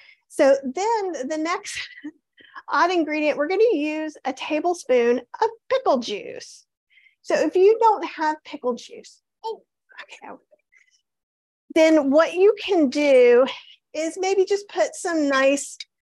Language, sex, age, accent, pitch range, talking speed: English, female, 40-59, American, 265-380 Hz, 120 wpm